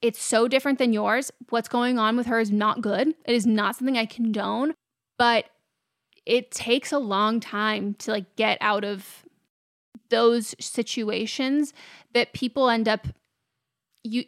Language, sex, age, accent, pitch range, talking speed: English, female, 20-39, American, 215-240 Hz, 155 wpm